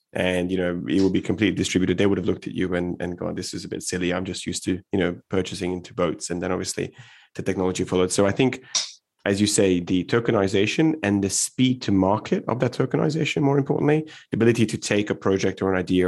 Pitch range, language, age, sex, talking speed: 90-105 Hz, English, 20-39, male, 240 wpm